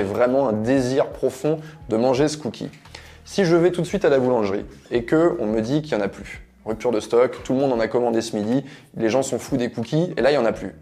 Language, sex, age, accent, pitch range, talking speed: French, male, 20-39, French, 110-165 Hz, 285 wpm